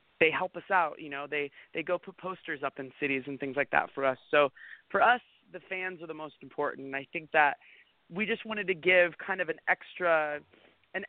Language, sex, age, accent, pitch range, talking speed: English, male, 20-39, American, 150-180 Hz, 225 wpm